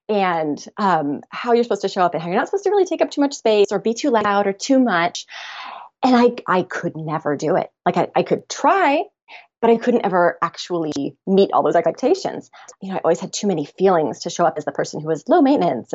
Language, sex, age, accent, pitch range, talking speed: English, female, 30-49, American, 180-245 Hz, 250 wpm